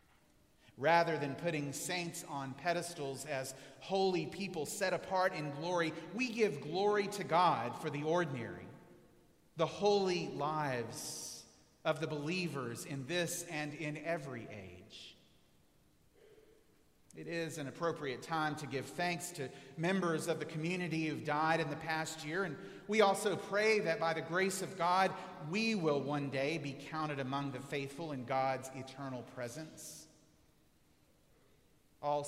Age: 40-59